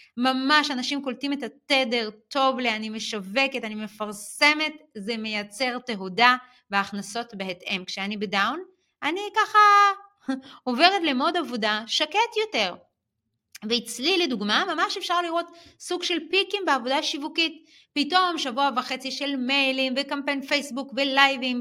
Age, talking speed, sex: 30-49, 115 wpm, female